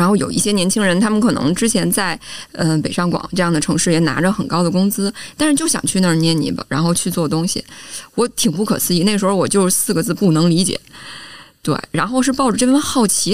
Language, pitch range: Chinese, 165-225 Hz